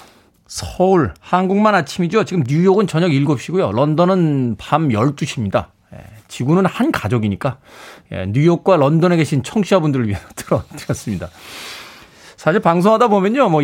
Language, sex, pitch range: Korean, male, 130-185 Hz